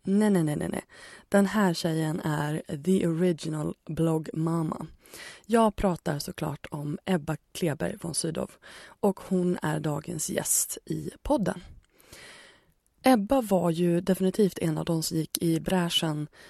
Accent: native